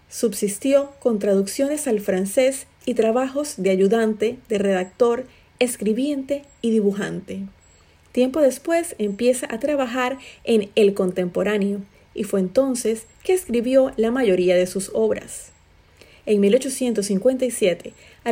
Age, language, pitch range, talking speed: 30-49, Spanish, 205-260 Hz, 115 wpm